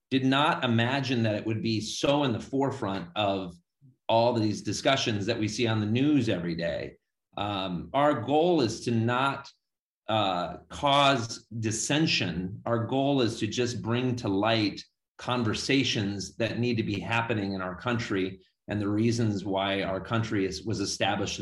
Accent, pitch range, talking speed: American, 100-125 Hz, 160 wpm